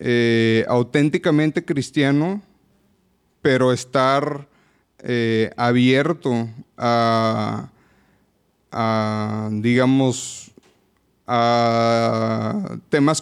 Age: 30-49